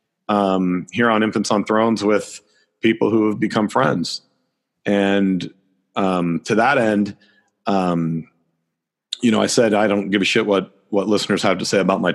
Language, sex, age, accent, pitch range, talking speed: English, male, 40-59, American, 90-110 Hz, 175 wpm